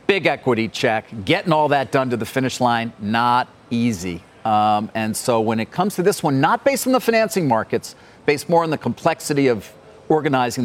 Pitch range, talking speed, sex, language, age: 120-160 Hz, 195 wpm, male, English, 50-69